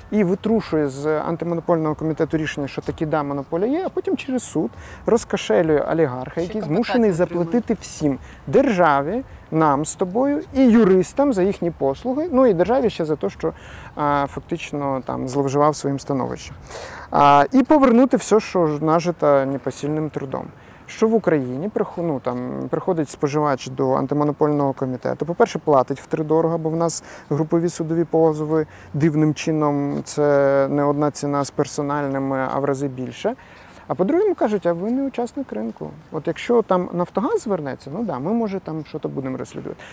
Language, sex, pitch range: Ukrainian, male, 145-200 Hz